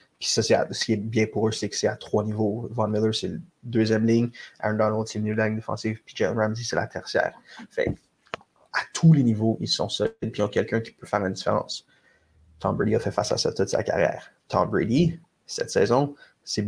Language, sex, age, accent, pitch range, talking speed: French, male, 20-39, Canadian, 105-115 Hz, 240 wpm